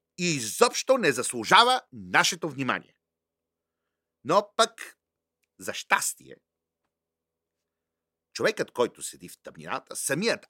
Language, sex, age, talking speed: Bulgarian, male, 50-69, 90 wpm